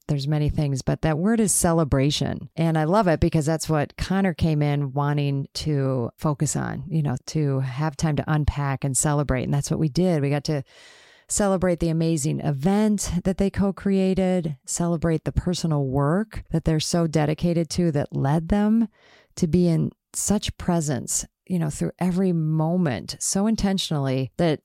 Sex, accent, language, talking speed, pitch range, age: female, American, English, 175 wpm, 150-180 Hz, 30-49